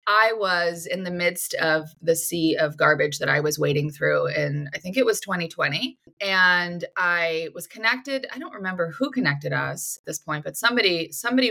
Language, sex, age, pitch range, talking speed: English, female, 20-39, 160-220 Hz, 195 wpm